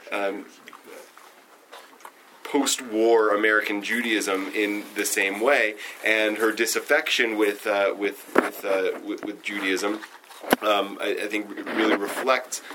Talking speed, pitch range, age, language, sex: 120 wpm, 105-130 Hz, 30-49, English, male